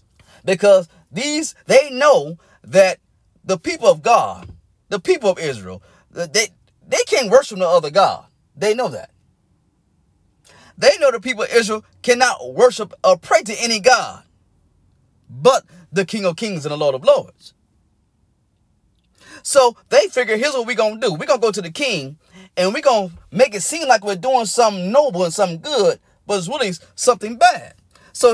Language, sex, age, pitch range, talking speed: English, male, 30-49, 185-265 Hz, 170 wpm